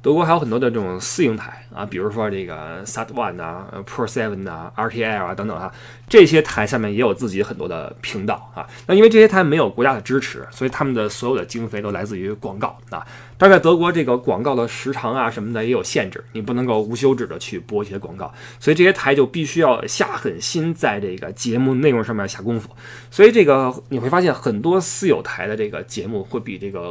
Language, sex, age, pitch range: Chinese, male, 20-39, 110-145 Hz